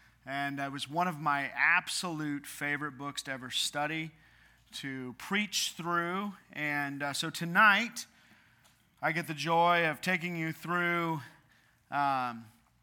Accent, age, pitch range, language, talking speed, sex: American, 30-49, 140-175 Hz, English, 130 wpm, male